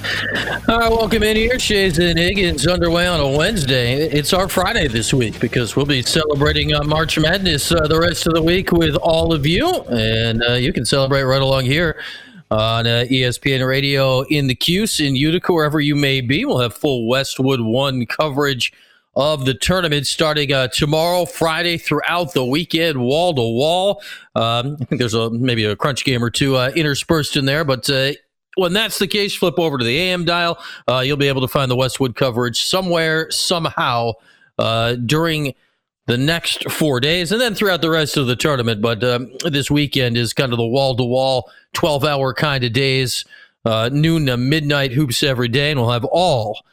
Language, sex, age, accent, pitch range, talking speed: English, male, 40-59, American, 125-160 Hz, 190 wpm